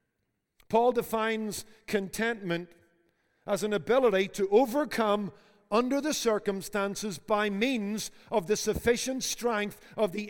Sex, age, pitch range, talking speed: male, 50-69, 195-240 Hz, 110 wpm